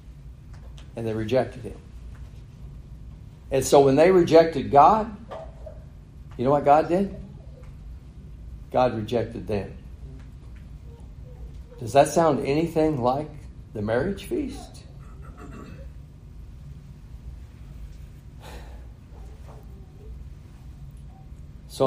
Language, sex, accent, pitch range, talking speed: English, male, American, 90-145 Hz, 75 wpm